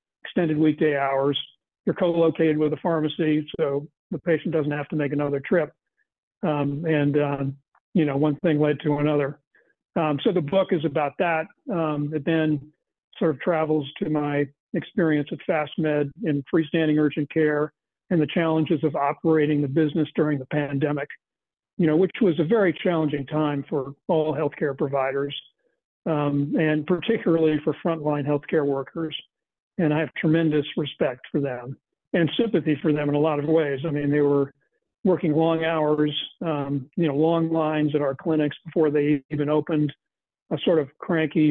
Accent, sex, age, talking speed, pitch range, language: American, male, 50-69, 170 wpm, 150-165 Hz, English